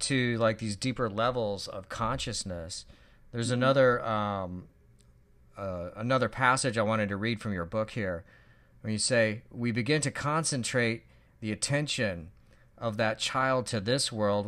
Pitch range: 100-125 Hz